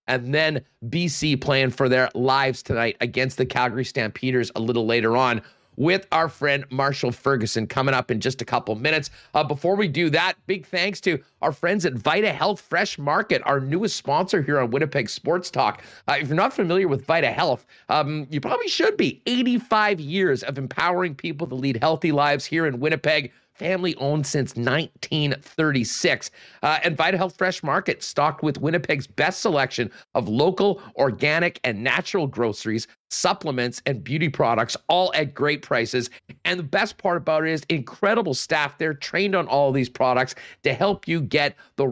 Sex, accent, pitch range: male, American, 130-170 Hz